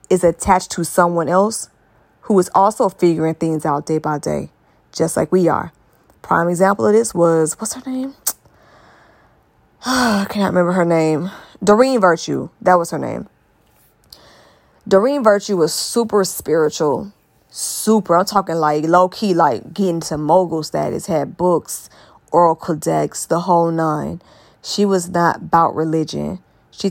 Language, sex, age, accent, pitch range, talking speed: English, female, 20-39, American, 160-190 Hz, 150 wpm